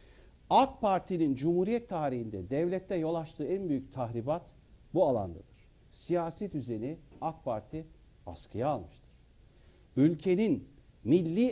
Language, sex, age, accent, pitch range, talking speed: Turkish, male, 60-79, native, 115-165 Hz, 105 wpm